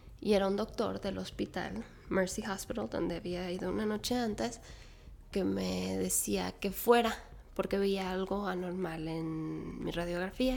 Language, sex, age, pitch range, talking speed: Spanish, female, 20-39, 165-230 Hz, 150 wpm